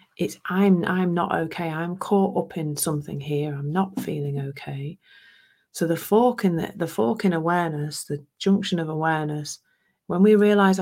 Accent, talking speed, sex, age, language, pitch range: British, 170 wpm, female, 40-59, English, 145-195 Hz